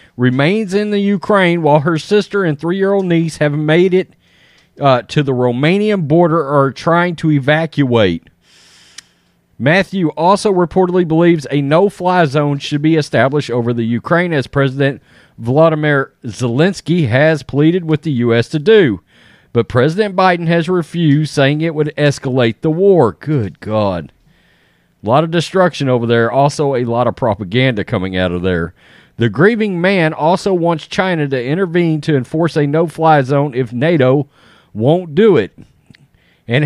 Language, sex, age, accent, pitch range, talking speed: English, male, 40-59, American, 130-170 Hz, 155 wpm